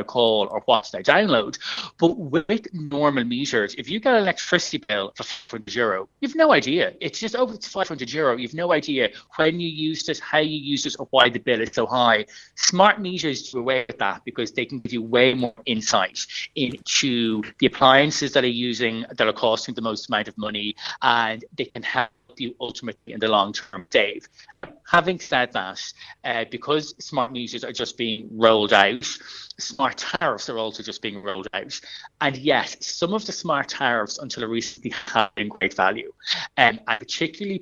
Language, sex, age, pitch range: English, male, 30-49, 115-165 Hz